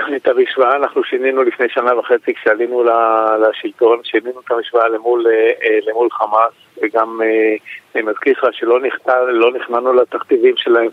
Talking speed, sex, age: 120 wpm, male, 50-69